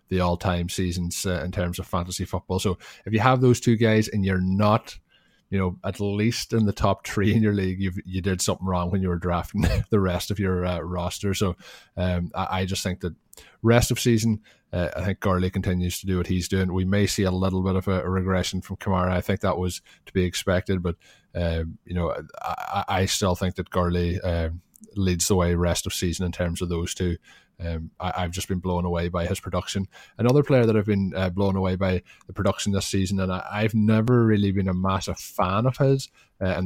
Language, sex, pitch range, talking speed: English, male, 90-100 Hz, 230 wpm